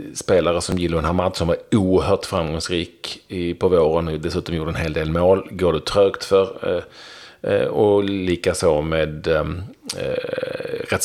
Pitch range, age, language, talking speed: 80-100 Hz, 40-59, Swedish, 135 wpm